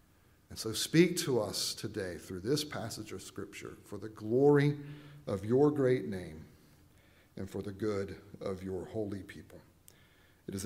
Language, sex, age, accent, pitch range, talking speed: English, male, 50-69, American, 120-180 Hz, 160 wpm